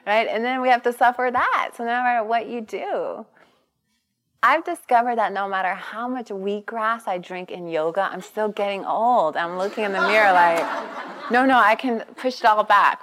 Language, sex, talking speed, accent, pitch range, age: English, female, 205 wpm, American, 185-240 Hz, 30-49